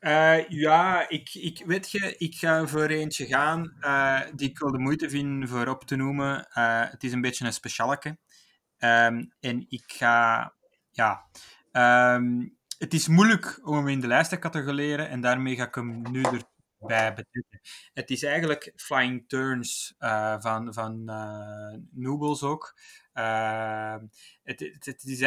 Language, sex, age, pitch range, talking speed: Dutch, male, 20-39, 115-145 Hz, 160 wpm